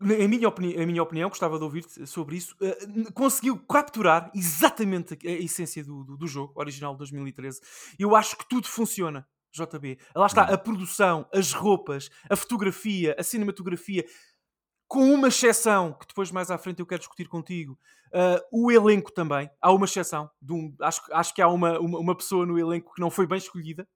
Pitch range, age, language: 165-215 Hz, 20-39, Portuguese